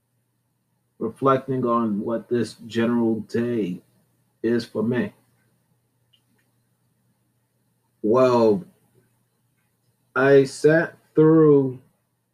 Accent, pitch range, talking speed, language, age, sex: American, 105-130 Hz, 65 wpm, English, 30-49, male